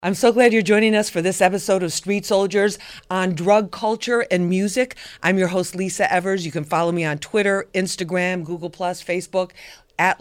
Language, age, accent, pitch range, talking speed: English, 40-59, American, 175-210 Hz, 195 wpm